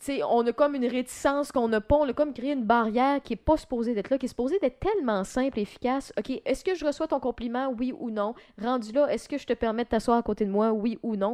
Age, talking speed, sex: 20-39, 305 wpm, female